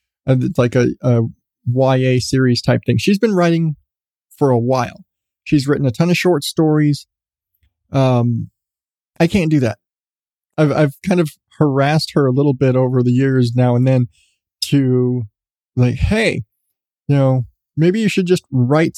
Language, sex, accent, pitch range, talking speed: English, male, American, 120-155 Hz, 160 wpm